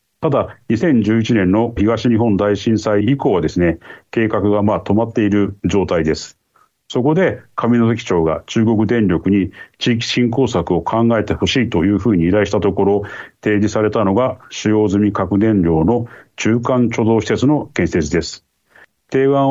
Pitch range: 100-125 Hz